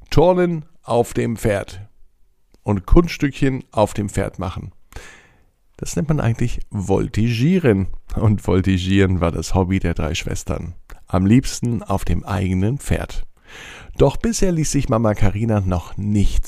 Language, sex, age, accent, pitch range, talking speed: German, male, 50-69, German, 90-120 Hz, 135 wpm